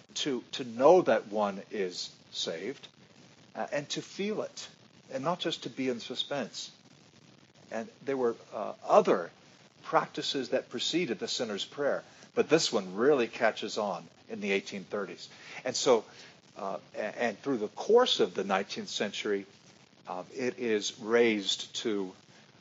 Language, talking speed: English, 145 wpm